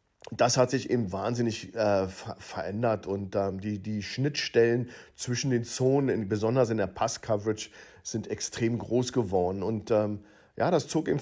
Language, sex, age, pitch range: German, male, 50-69, 105-125 Hz